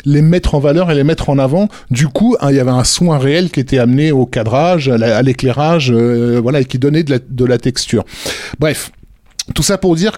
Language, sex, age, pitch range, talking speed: French, male, 20-39, 125-160 Hz, 235 wpm